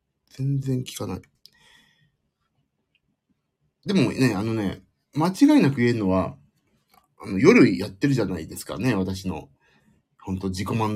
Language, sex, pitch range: Japanese, male, 95-140 Hz